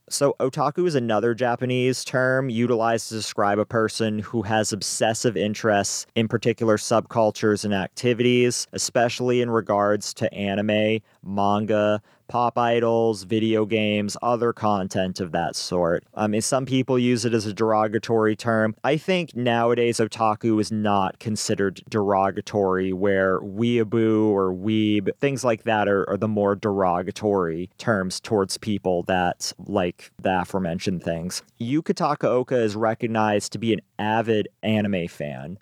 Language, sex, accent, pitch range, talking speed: English, male, American, 105-120 Hz, 140 wpm